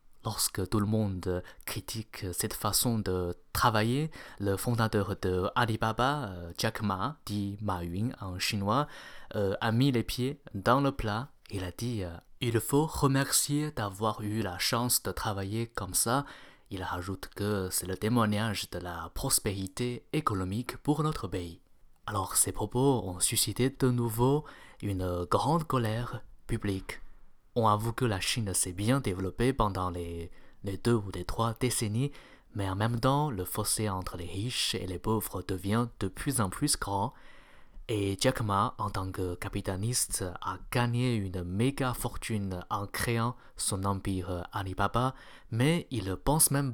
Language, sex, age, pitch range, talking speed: French, male, 20-39, 95-120 Hz, 160 wpm